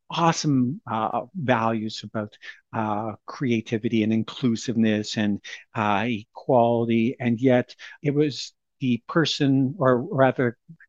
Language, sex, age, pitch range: English, male, 50-69, 115-155 Hz